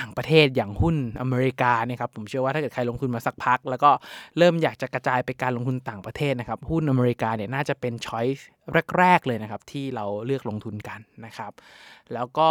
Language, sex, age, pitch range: Thai, male, 20-39, 120-155 Hz